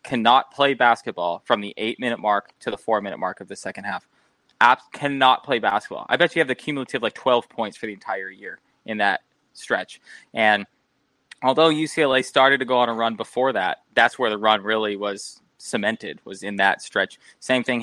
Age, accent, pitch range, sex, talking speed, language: 20-39, American, 105-130 Hz, male, 205 wpm, English